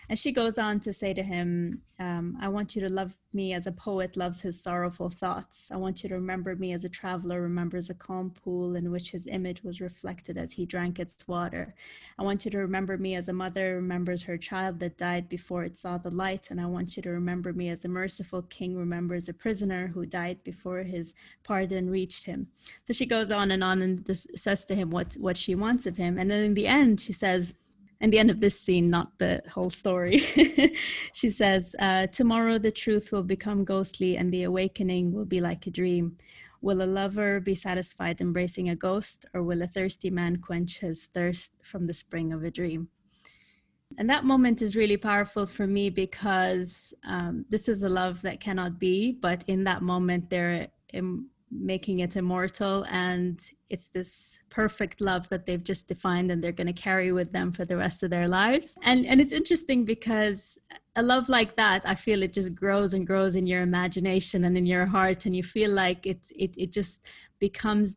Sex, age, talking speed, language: female, 20-39, 210 wpm, English